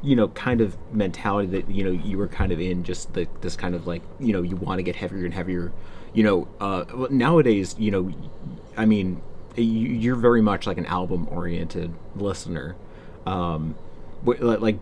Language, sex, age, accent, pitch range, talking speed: English, male, 30-49, American, 90-110 Hz, 170 wpm